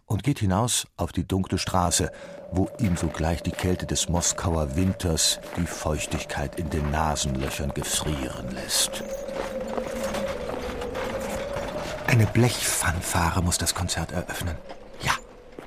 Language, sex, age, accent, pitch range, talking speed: German, male, 50-69, German, 85-125 Hz, 110 wpm